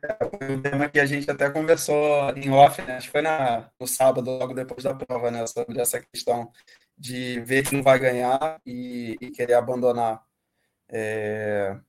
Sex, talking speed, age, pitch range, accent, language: male, 180 wpm, 20-39, 125-155 Hz, Brazilian, Portuguese